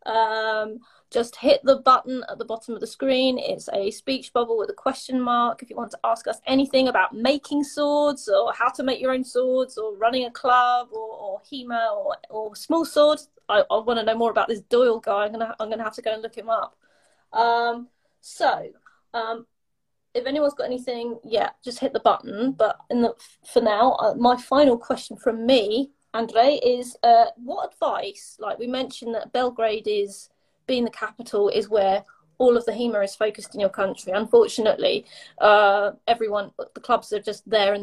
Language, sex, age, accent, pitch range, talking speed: English, female, 20-39, British, 215-265 Hz, 200 wpm